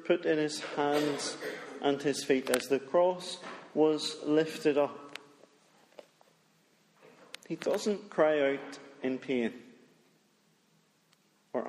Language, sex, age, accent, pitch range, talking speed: English, male, 40-59, British, 130-150 Hz, 105 wpm